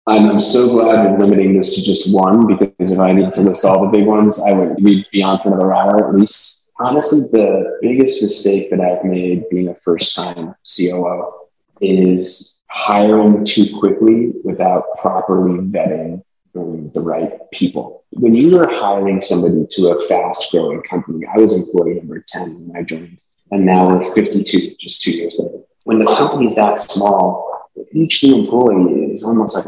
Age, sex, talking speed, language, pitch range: 30-49, male, 170 wpm, English, 90-105 Hz